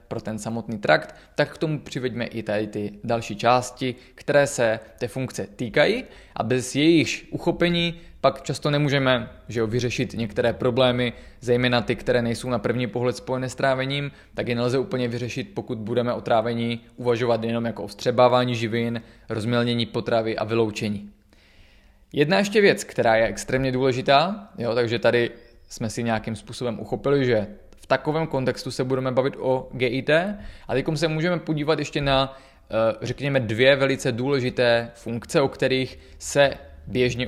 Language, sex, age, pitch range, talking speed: Czech, male, 20-39, 115-140 Hz, 160 wpm